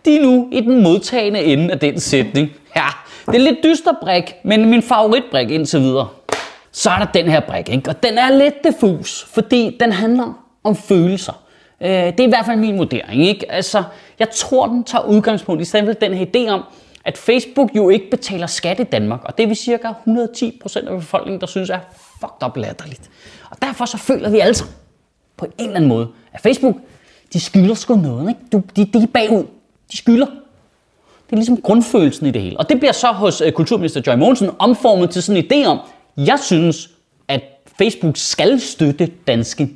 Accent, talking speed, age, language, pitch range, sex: native, 200 wpm, 30-49, Danish, 170-240 Hz, male